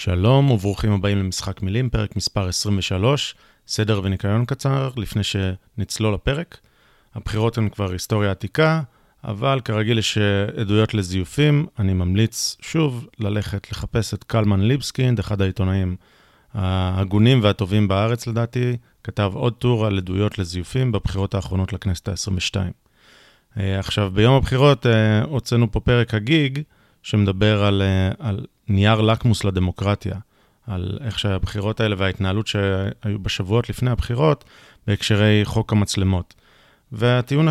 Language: Hebrew